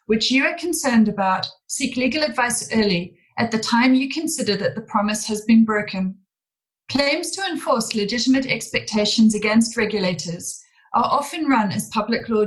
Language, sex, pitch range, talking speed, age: English, female, 210-265 Hz, 160 wpm, 30-49